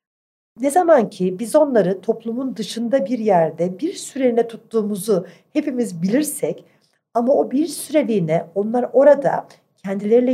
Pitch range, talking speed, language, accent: 185-245 Hz, 120 wpm, Turkish, native